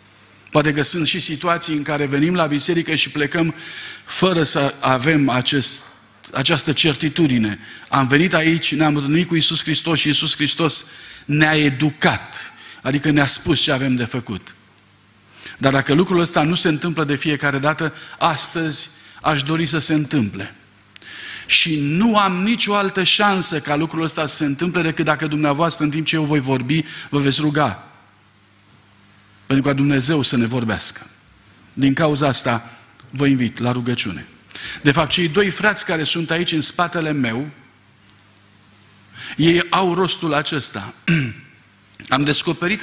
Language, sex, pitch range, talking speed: Romanian, male, 120-165 Hz, 150 wpm